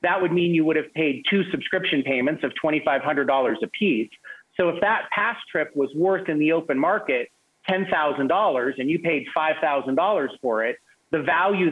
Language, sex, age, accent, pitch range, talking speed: English, male, 40-59, American, 150-190 Hz, 170 wpm